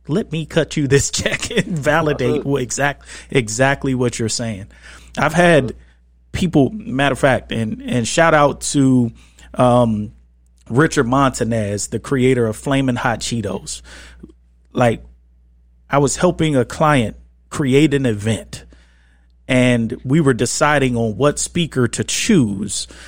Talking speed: 130 wpm